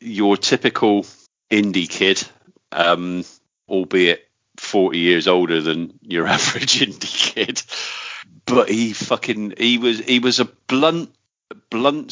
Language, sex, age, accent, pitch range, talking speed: English, male, 40-59, British, 85-105 Hz, 120 wpm